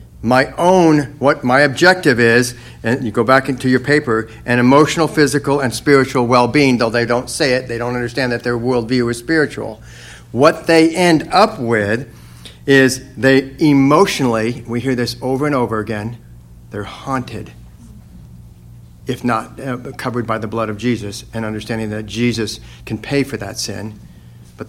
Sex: male